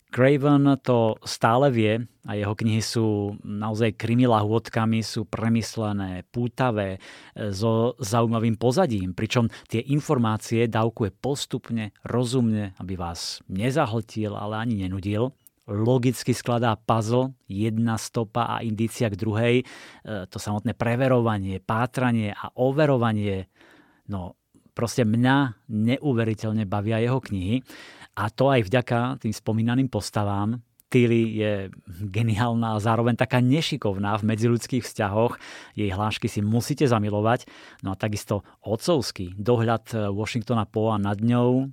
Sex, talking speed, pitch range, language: male, 120 wpm, 105-125 Hz, Slovak